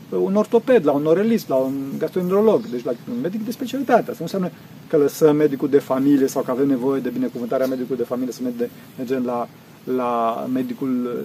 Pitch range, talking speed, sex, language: 140-225 Hz, 190 wpm, male, Romanian